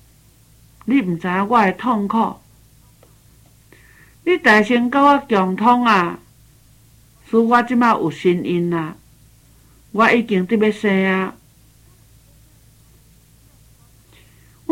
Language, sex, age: Chinese, male, 60-79